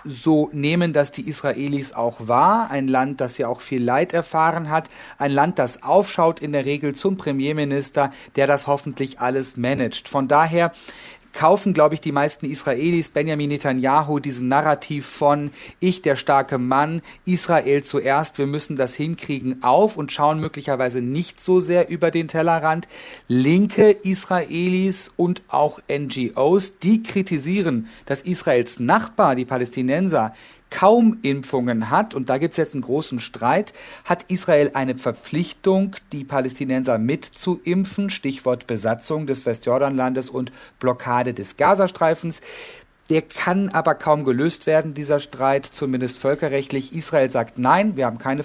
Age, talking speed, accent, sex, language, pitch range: 40-59, 145 wpm, German, male, German, 130-160 Hz